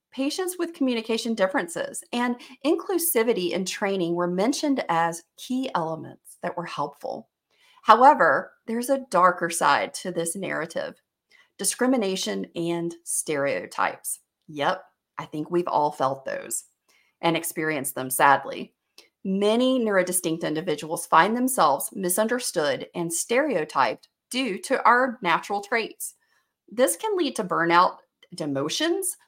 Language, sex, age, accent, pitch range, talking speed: English, female, 40-59, American, 170-260 Hz, 120 wpm